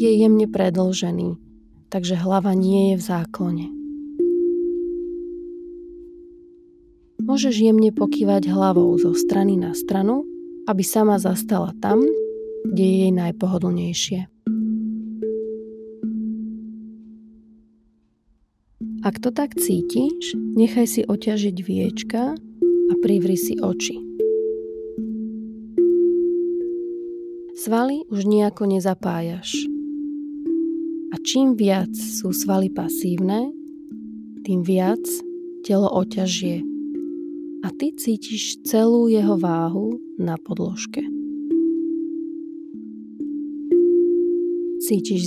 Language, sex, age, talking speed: Slovak, female, 30-49, 80 wpm